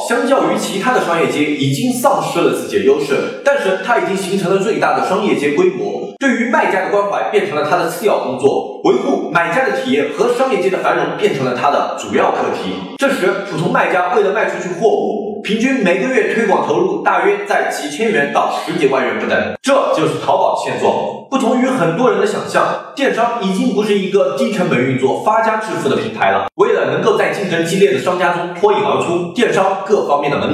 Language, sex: Chinese, male